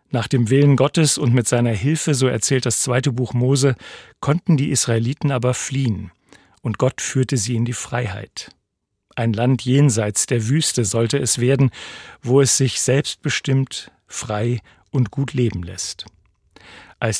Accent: German